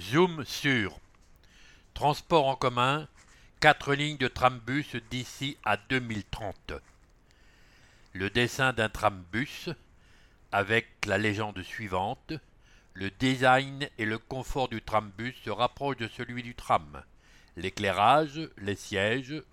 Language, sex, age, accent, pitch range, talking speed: English, male, 60-79, French, 105-140 Hz, 110 wpm